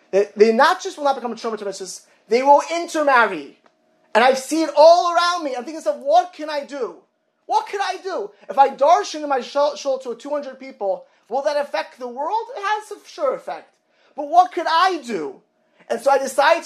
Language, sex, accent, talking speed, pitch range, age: English, male, American, 200 wpm, 210-300 Hz, 30-49